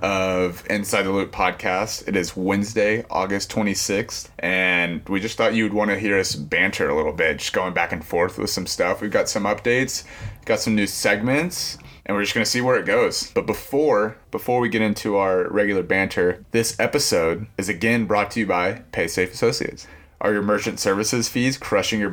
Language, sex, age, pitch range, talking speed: English, male, 30-49, 95-115 Hz, 200 wpm